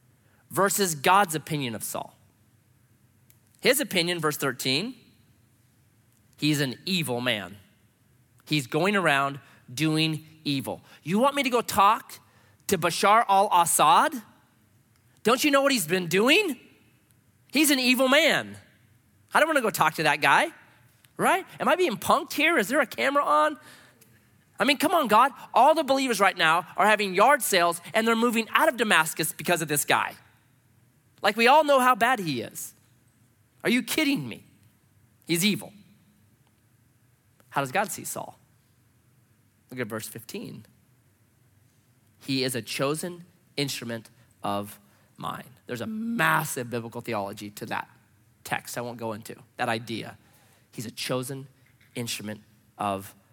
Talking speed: 145 wpm